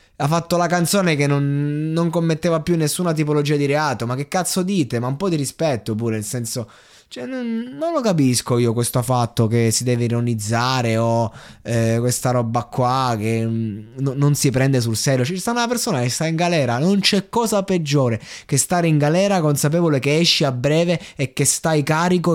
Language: Italian